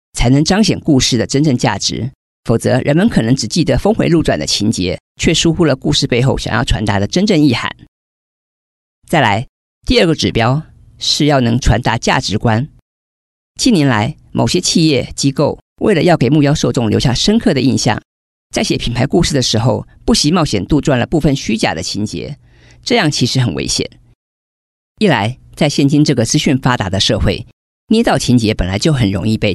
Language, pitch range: Chinese, 110-145 Hz